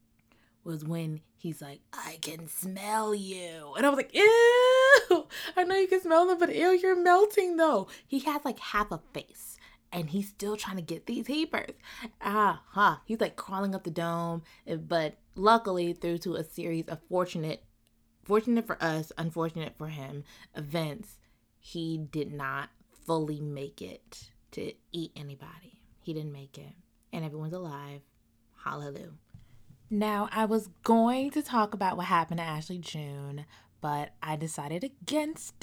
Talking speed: 160 wpm